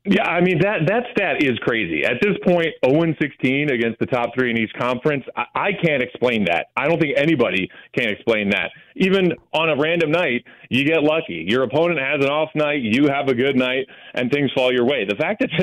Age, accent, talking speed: 30-49, American, 225 wpm